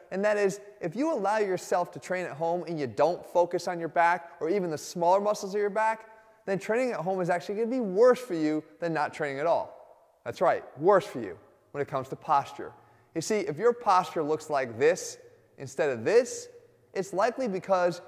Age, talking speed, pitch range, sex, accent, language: 30-49, 220 wpm, 165-230 Hz, male, American, English